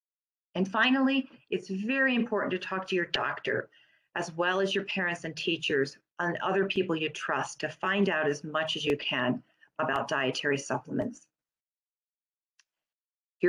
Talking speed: 150 wpm